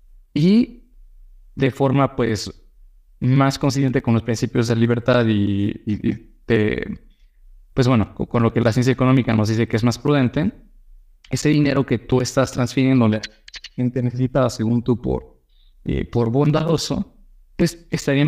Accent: Mexican